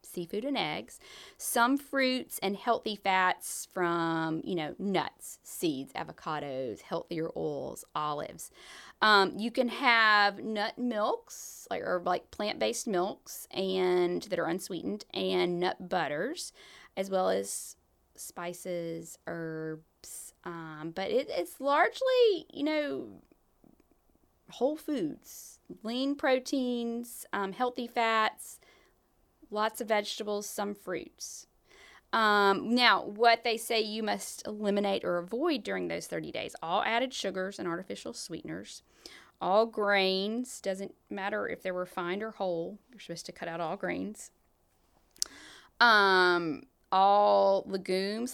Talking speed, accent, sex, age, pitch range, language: 120 wpm, American, female, 20-39, 175-235 Hz, English